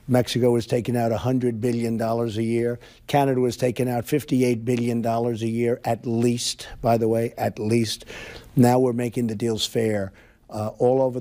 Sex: male